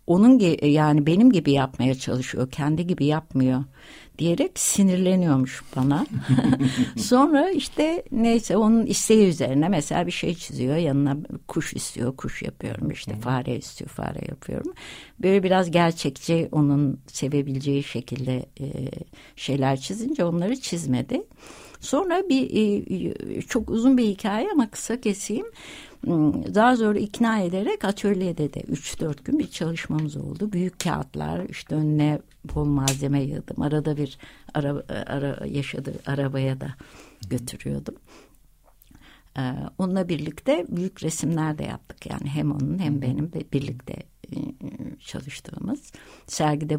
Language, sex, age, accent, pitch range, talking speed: Turkish, female, 60-79, native, 140-205 Hz, 120 wpm